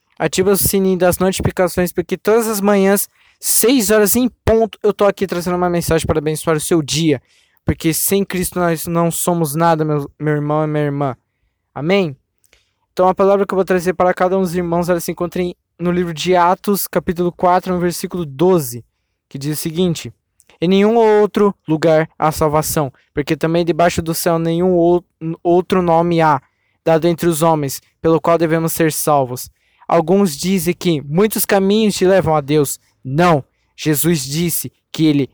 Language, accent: Portuguese, Brazilian